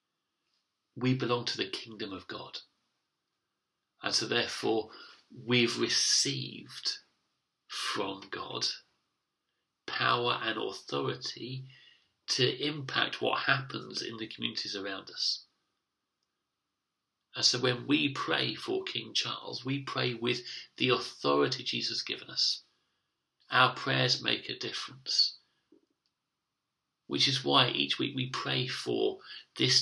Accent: British